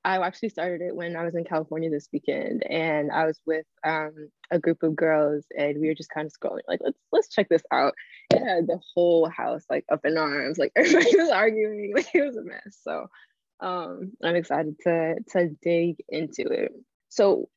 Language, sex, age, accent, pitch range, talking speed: English, female, 20-39, American, 155-180 Hz, 210 wpm